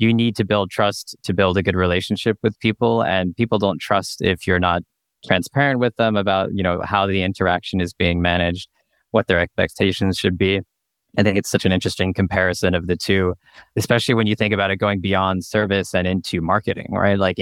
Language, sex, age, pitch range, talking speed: English, male, 20-39, 90-105 Hz, 205 wpm